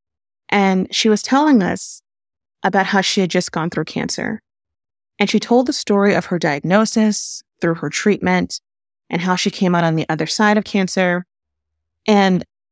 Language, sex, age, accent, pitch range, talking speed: English, female, 30-49, American, 170-210 Hz, 170 wpm